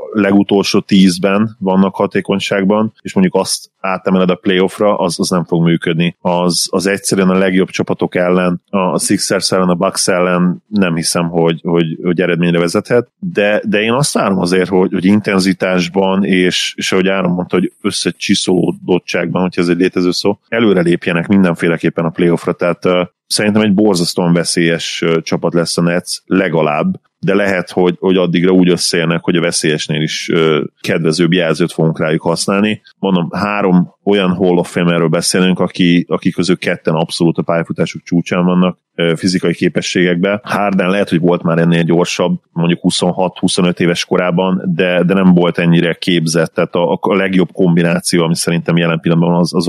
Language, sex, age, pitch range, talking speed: Hungarian, male, 30-49, 85-95 Hz, 165 wpm